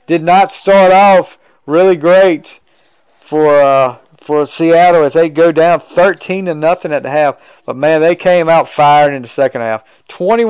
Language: English